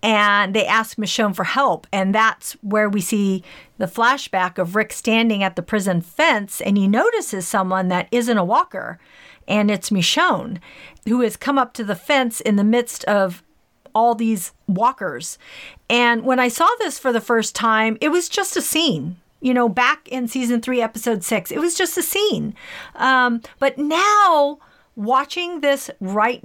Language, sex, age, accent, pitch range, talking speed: English, female, 40-59, American, 200-260 Hz, 175 wpm